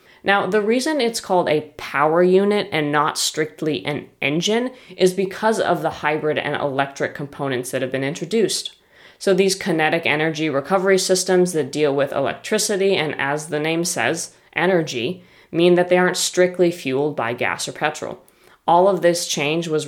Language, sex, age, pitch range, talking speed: English, female, 20-39, 145-185 Hz, 170 wpm